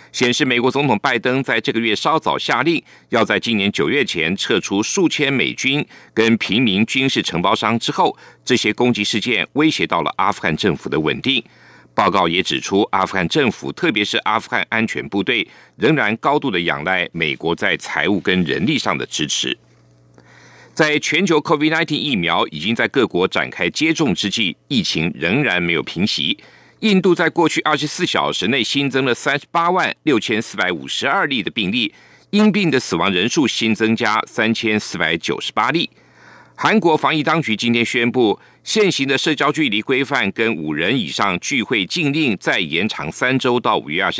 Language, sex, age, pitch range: Chinese, male, 50-69, 105-150 Hz